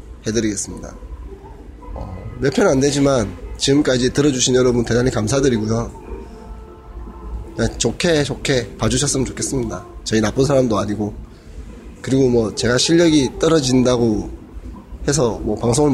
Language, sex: Korean, male